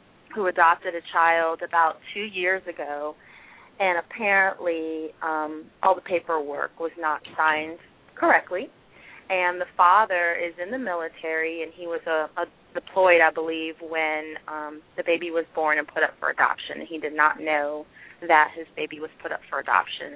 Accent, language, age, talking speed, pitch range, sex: American, English, 30-49, 160 wpm, 155-175 Hz, female